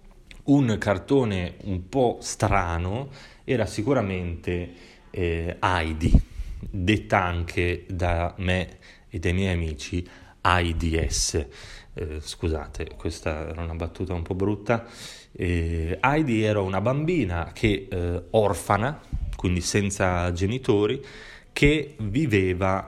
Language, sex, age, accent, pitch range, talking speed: Italian, male, 30-49, native, 85-105 Hz, 105 wpm